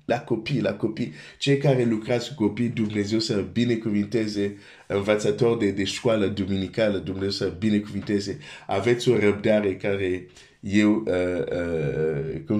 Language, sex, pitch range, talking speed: Romanian, male, 95-125 Hz, 150 wpm